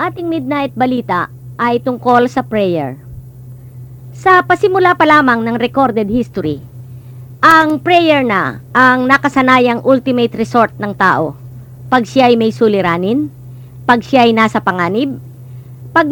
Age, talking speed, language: 50-69, 120 wpm, English